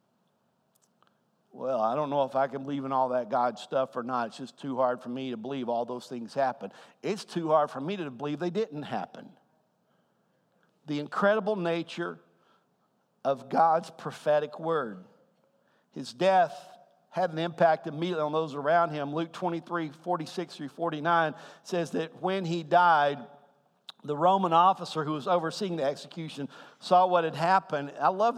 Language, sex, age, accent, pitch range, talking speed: English, male, 50-69, American, 145-180 Hz, 165 wpm